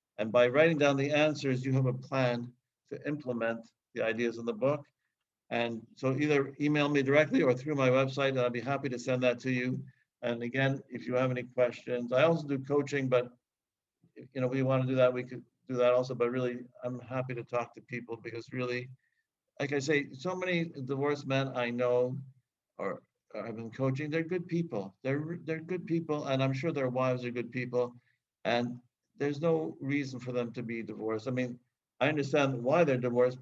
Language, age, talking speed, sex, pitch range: English, 60-79, 205 wpm, male, 120-140 Hz